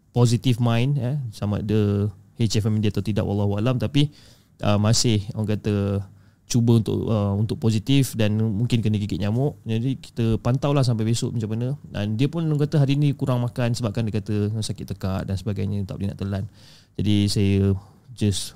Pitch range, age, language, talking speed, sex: 105-125 Hz, 20-39, Malay, 180 wpm, male